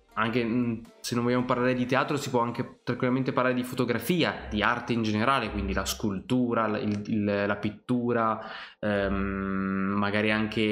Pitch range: 110-135 Hz